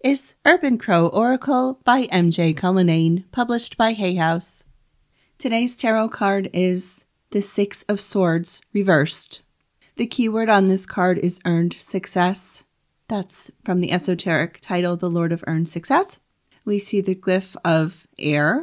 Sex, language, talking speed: female, English, 140 wpm